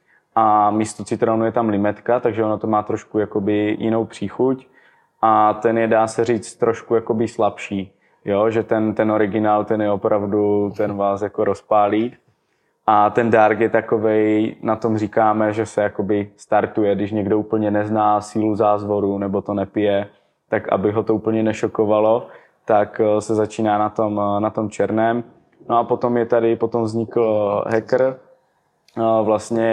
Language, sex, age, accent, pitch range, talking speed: Czech, male, 20-39, native, 105-115 Hz, 155 wpm